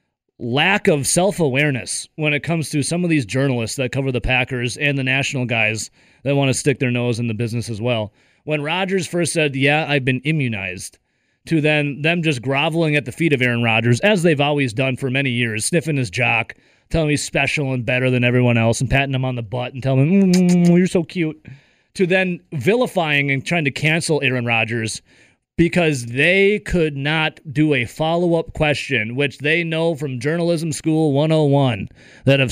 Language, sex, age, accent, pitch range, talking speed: English, male, 30-49, American, 130-170 Hz, 200 wpm